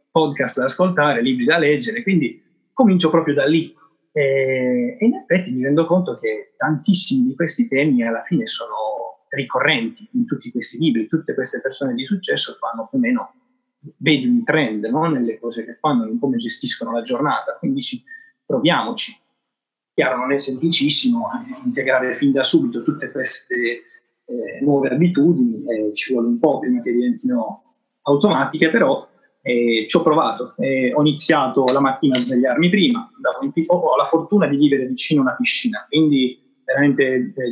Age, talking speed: 30-49, 165 wpm